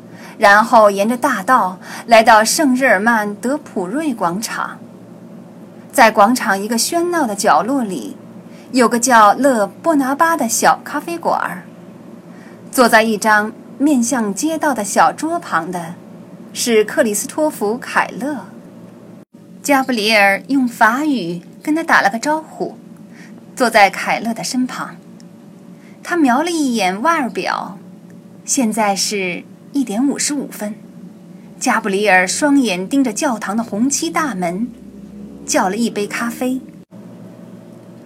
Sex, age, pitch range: female, 30-49, 200-275 Hz